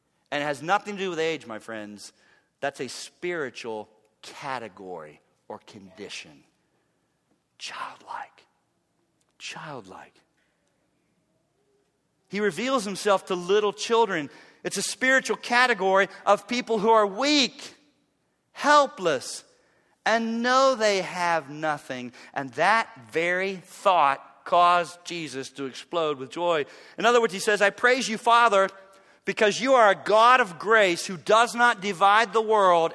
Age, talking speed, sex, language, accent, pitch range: 40-59, 130 wpm, male, English, American, 140-215 Hz